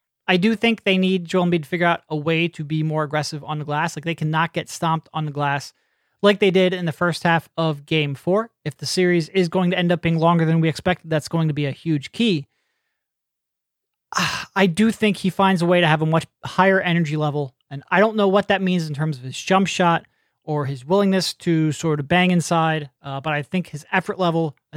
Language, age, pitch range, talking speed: English, 30-49, 150-180 Hz, 240 wpm